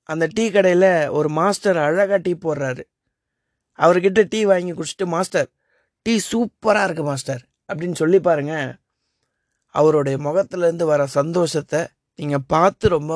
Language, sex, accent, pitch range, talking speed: Tamil, male, native, 150-190 Hz, 125 wpm